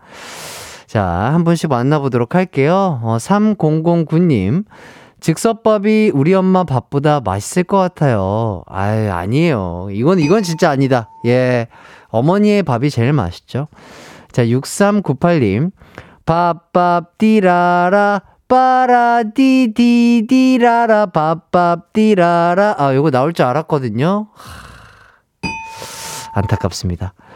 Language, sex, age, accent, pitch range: Korean, male, 30-49, native, 130-210 Hz